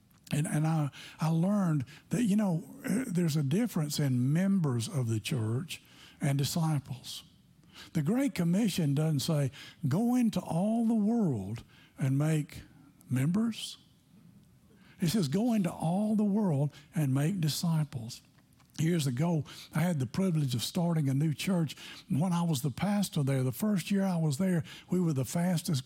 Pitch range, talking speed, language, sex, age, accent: 140-180 Hz, 160 wpm, English, male, 60-79, American